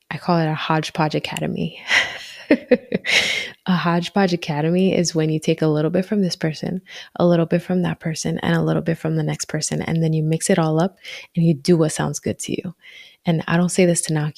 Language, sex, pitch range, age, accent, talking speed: English, female, 160-185 Hz, 20-39, American, 230 wpm